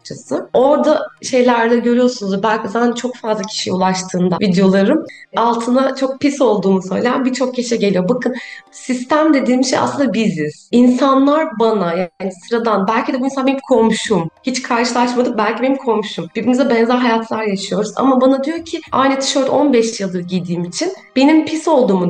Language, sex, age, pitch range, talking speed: Turkish, female, 30-49, 195-260 Hz, 150 wpm